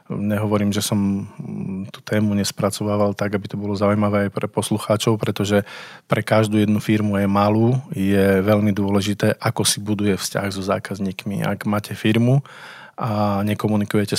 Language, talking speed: Slovak, 150 wpm